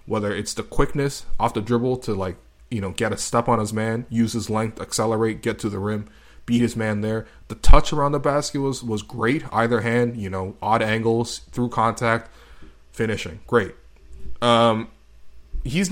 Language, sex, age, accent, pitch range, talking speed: English, male, 20-39, American, 95-120 Hz, 185 wpm